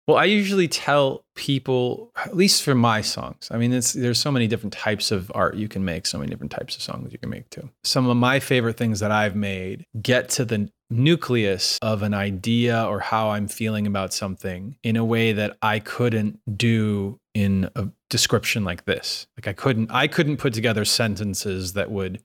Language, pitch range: English, 105-130 Hz